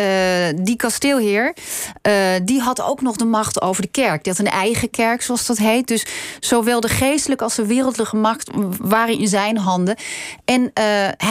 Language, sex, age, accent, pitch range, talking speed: Dutch, female, 30-49, Dutch, 195-235 Hz, 185 wpm